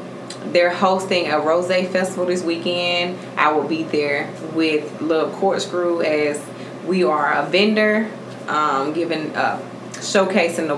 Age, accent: 20-39, American